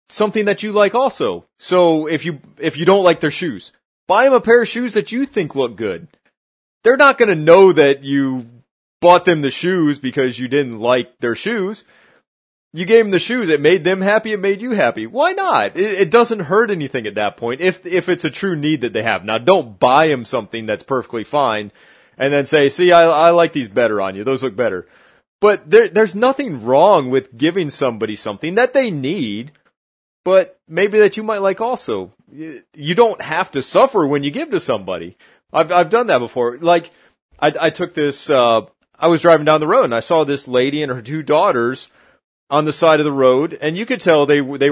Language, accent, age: English, American, 30-49